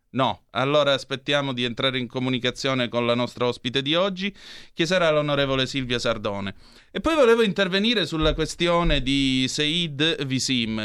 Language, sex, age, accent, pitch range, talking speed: Italian, male, 30-49, native, 115-150 Hz, 150 wpm